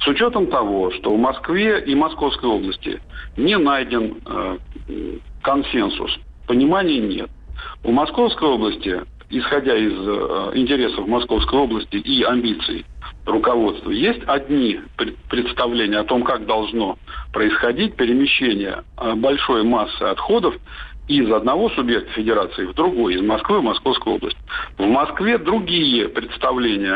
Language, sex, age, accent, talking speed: Russian, male, 50-69, native, 120 wpm